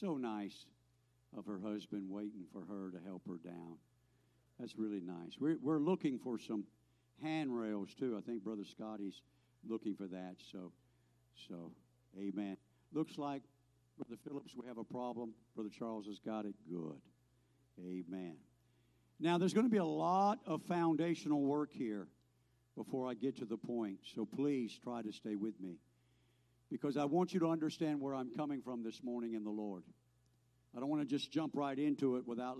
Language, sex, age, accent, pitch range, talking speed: English, male, 60-79, American, 90-145 Hz, 175 wpm